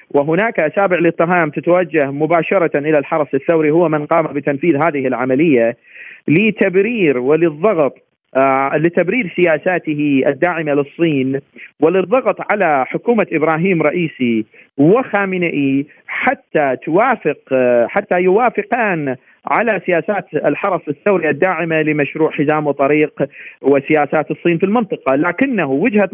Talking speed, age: 105 wpm, 40-59